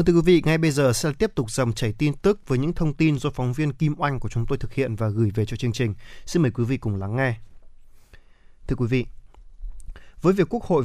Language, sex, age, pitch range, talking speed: Vietnamese, male, 20-39, 115-150 Hz, 260 wpm